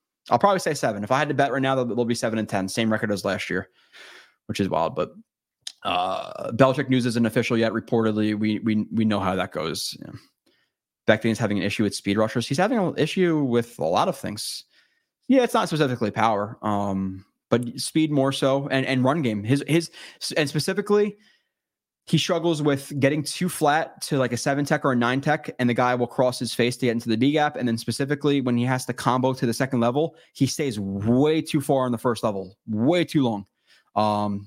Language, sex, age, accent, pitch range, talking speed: English, male, 20-39, American, 110-135 Hz, 225 wpm